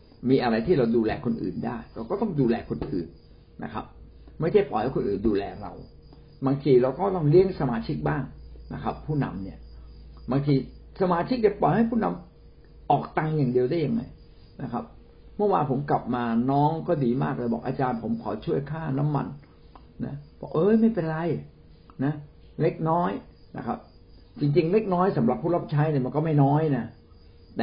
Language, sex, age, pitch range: Thai, male, 60-79, 120-180 Hz